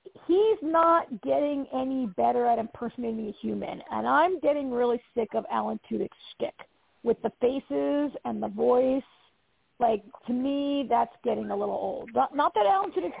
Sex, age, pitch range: female, 40-59, 225-275 Hz